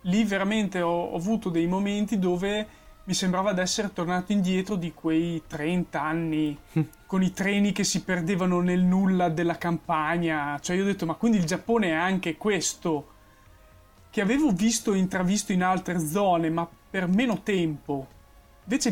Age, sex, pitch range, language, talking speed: 20-39, male, 165-195 Hz, Italian, 165 wpm